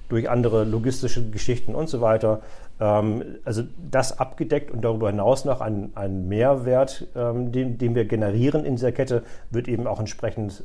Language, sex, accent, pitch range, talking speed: German, male, German, 105-130 Hz, 150 wpm